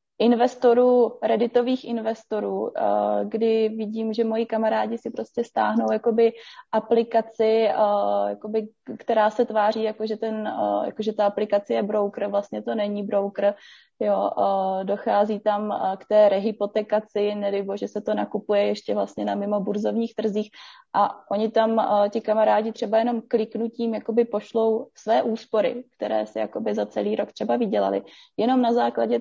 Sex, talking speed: female, 135 wpm